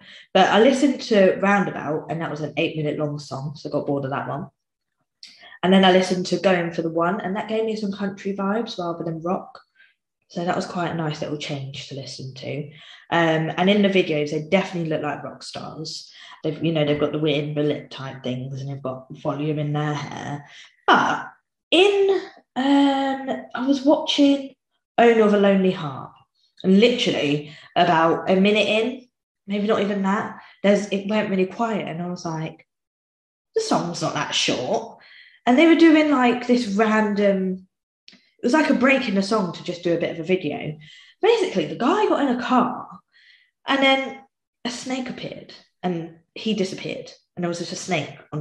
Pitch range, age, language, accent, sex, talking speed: 155-225 Hz, 20-39, English, British, female, 195 wpm